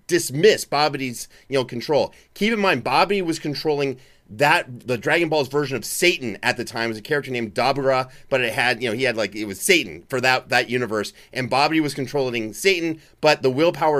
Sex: male